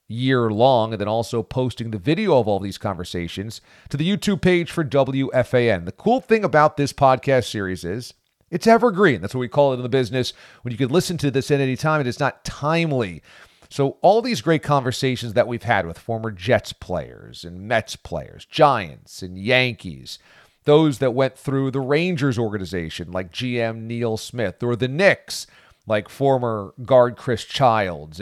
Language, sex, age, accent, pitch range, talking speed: English, male, 40-59, American, 110-150 Hz, 185 wpm